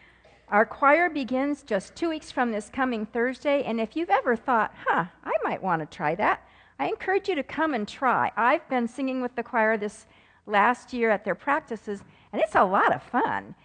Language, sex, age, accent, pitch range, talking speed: English, female, 50-69, American, 210-265 Hz, 205 wpm